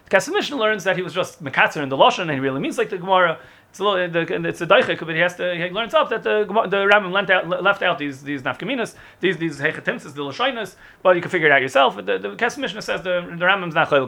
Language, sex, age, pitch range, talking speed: English, male, 30-49, 150-210 Hz, 255 wpm